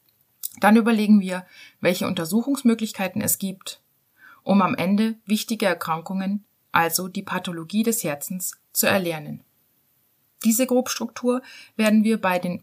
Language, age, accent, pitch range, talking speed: German, 30-49, German, 170-220 Hz, 120 wpm